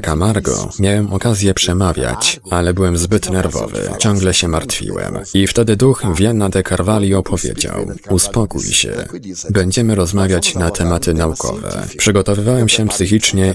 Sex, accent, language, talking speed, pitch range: male, native, Polish, 125 wpm, 85-105 Hz